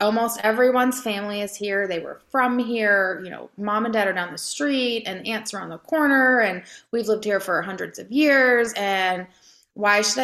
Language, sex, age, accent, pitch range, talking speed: English, female, 20-39, American, 195-265 Hz, 205 wpm